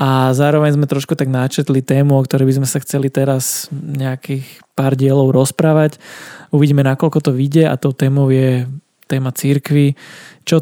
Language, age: Slovak, 20-39